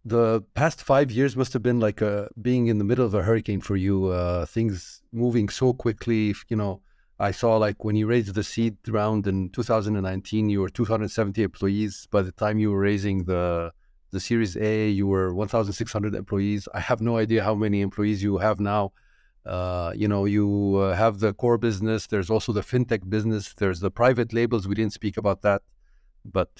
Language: English